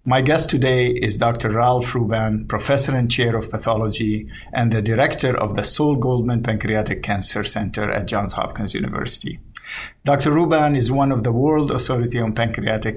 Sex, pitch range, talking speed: male, 115-135 Hz, 165 wpm